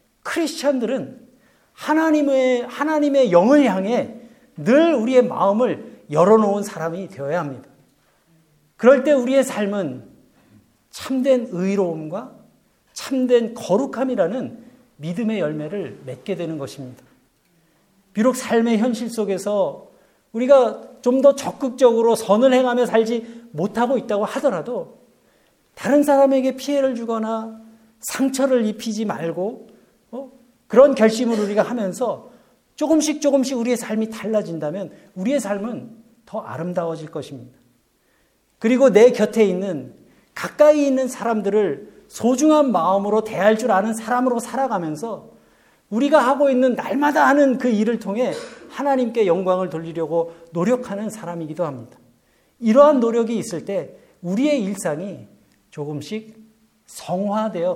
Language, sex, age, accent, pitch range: Korean, male, 50-69, native, 185-260 Hz